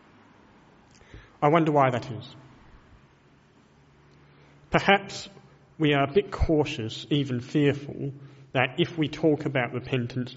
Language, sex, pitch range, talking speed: English, male, 120-140 Hz, 110 wpm